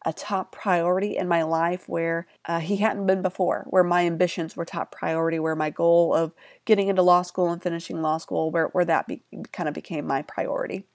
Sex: female